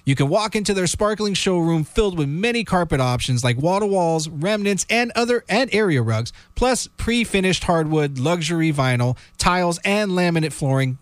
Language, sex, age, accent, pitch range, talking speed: English, male, 40-59, American, 135-195 Hz, 175 wpm